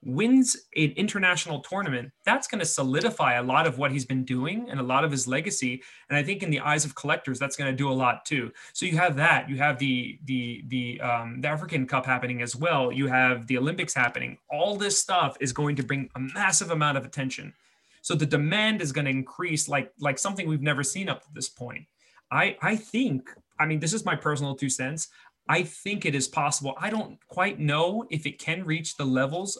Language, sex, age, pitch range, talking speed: English, male, 30-49, 130-170 Hz, 225 wpm